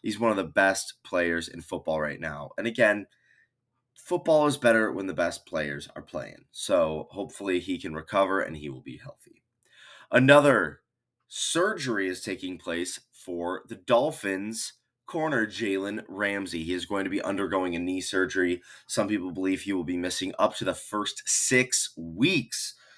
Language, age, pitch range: English, 20-39, 85-110 Hz